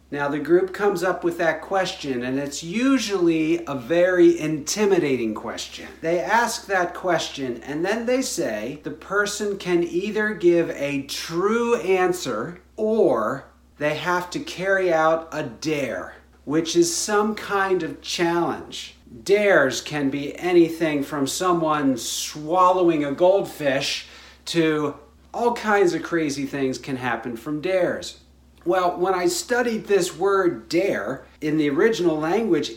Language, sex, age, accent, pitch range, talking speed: English, male, 50-69, American, 155-205 Hz, 135 wpm